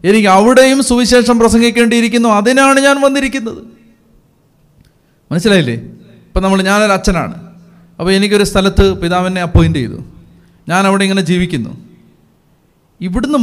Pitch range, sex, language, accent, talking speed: 170-225 Hz, male, Malayalam, native, 105 wpm